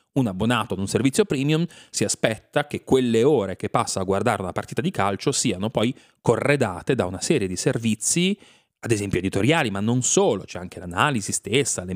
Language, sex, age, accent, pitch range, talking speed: Italian, male, 30-49, native, 95-125 Hz, 190 wpm